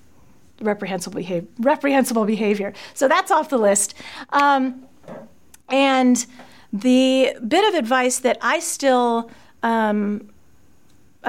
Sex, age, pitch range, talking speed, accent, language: female, 40-59, 205-255 Hz, 90 wpm, American, English